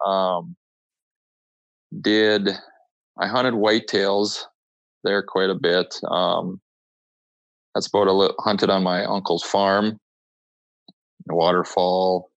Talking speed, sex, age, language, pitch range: 95 wpm, male, 20-39, English, 90-105 Hz